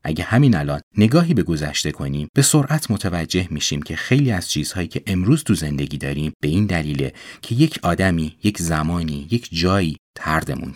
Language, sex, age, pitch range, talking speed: Persian, male, 30-49, 80-125 Hz, 175 wpm